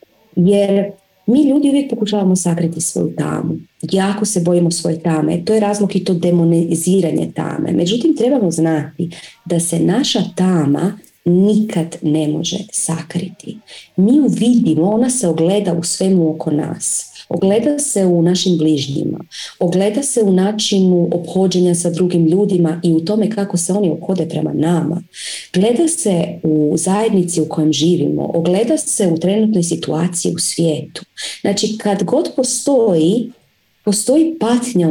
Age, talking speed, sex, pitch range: 30-49, 145 wpm, female, 165-215 Hz